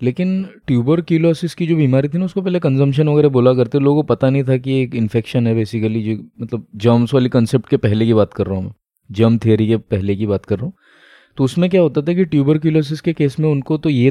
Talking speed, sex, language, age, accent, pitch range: 260 wpm, male, Hindi, 20-39, native, 115-150 Hz